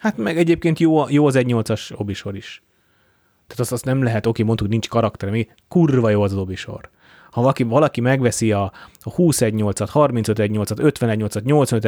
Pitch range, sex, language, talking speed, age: 100-120 Hz, male, Hungarian, 170 wpm, 30-49